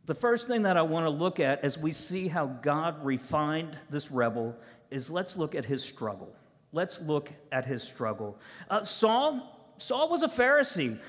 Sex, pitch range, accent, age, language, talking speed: male, 155-255 Hz, American, 50-69, English, 185 wpm